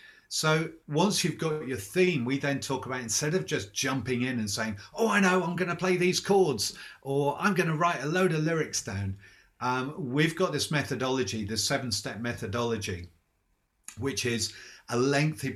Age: 30-49